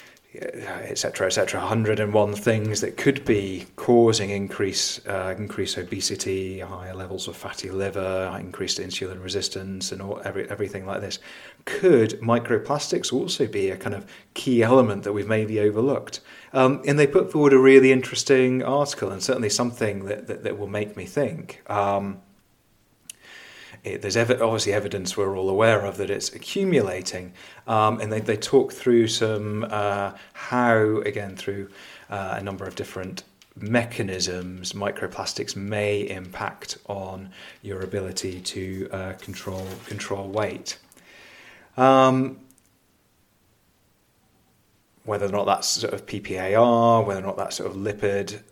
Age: 30-49